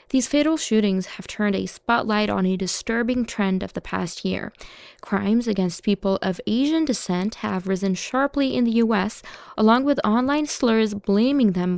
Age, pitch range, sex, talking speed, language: 20-39, 200-265 Hz, female, 170 wpm, English